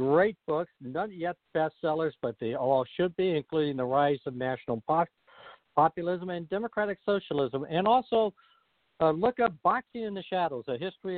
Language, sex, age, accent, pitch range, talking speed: English, male, 60-79, American, 130-170 Hz, 165 wpm